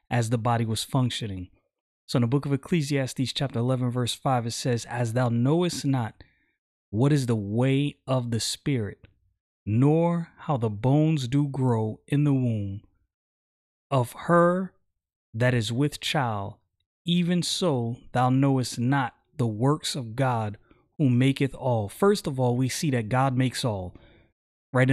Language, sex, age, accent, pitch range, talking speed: English, male, 30-49, American, 120-150 Hz, 155 wpm